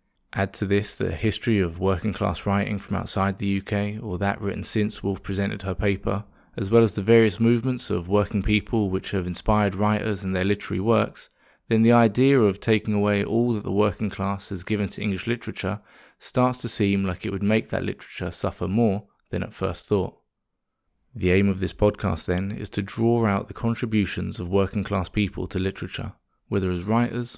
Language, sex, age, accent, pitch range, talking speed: English, male, 20-39, British, 95-110 Hz, 195 wpm